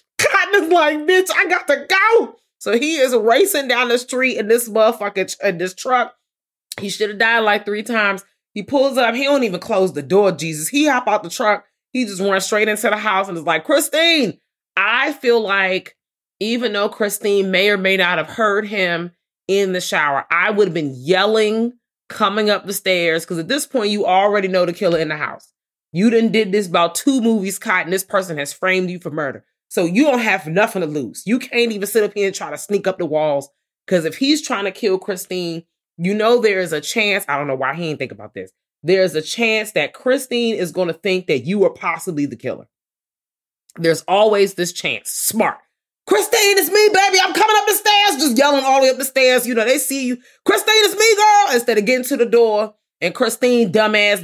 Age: 30-49